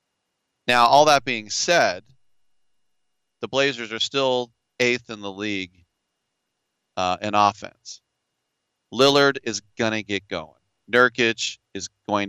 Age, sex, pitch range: 40-59, male, 95-120 Hz